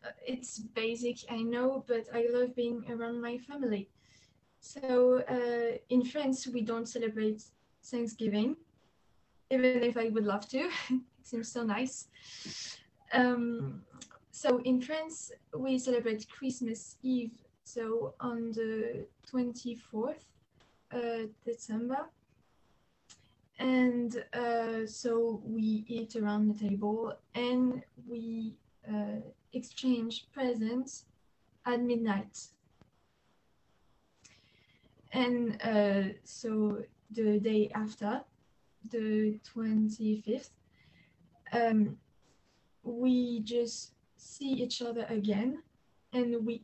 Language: English